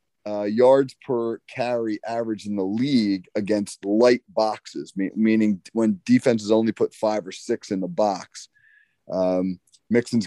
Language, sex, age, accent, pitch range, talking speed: English, male, 30-49, American, 100-120 Hz, 140 wpm